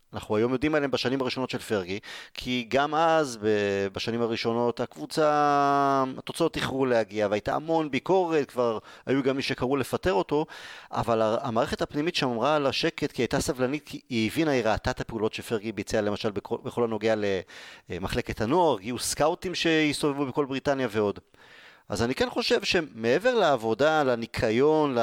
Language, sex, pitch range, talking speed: Hebrew, male, 115-150 Hz, 155 wpm